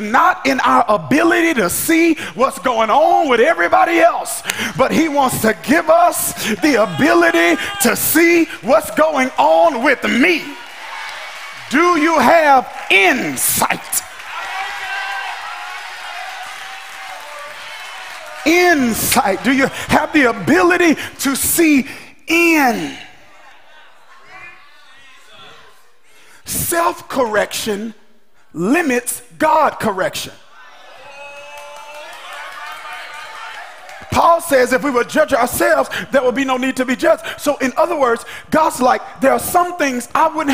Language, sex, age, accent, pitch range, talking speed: English, male, 40-59, American, 250-325 Hz, 105 wpm